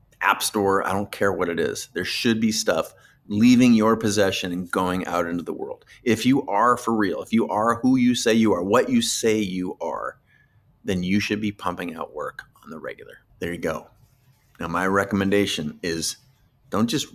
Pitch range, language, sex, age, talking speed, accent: 85-110 Hz, English, male, 30-49, 205 wpm, American